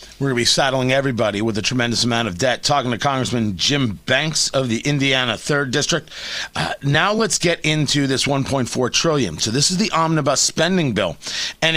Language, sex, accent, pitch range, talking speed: English, male, American, 140-180 Hz, 195 wpm